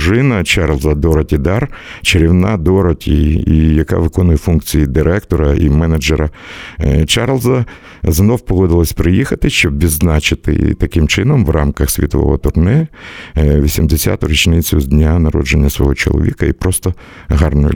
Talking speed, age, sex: 115 wpm, 50-69, male